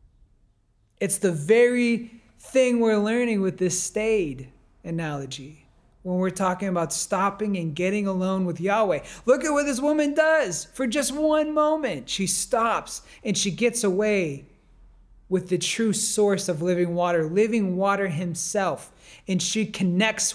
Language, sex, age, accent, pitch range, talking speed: English, male, 30-49, American, 175-225 Hz, 145 wpm